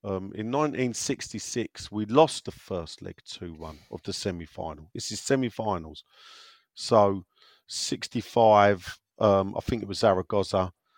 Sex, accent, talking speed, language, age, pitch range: male, British, 125 wpm, English, 40-59, 95-120 Hz